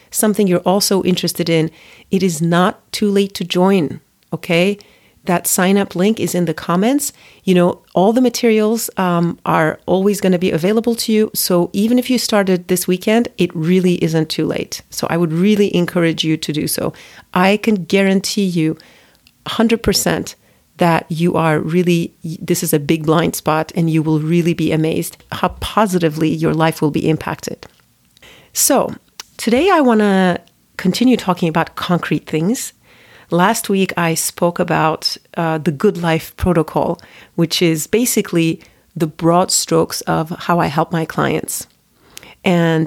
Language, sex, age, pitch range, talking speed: English, female, 40-59, 165-195 Hz, 160 wpm